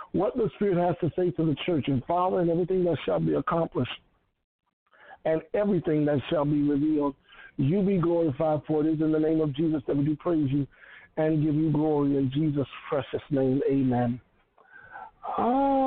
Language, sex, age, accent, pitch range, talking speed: English, male, 60-79, American, 145-175 Hz, 185 wpm